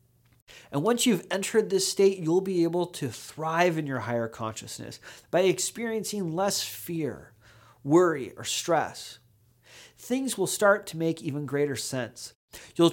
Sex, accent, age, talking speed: male, American, 30-49, 145 wpm